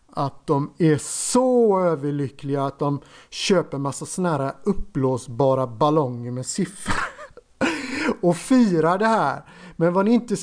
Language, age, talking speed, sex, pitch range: Swedish, 50-69, 130 wpm, male, 130-175 Hz